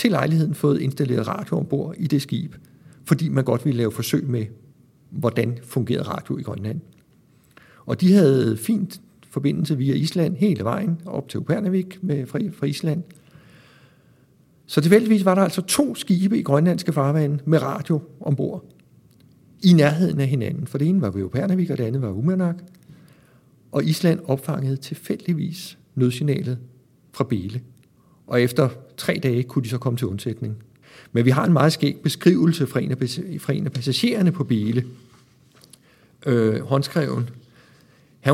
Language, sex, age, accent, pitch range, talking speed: Danish, male, 60-79, native, 125-160 Hz, 150 wpm